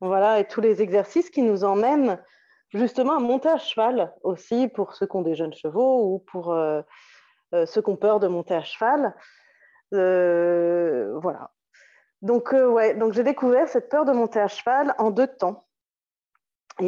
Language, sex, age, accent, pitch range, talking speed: French, female, 30-49, French, 185-235 Hz, 180 wpm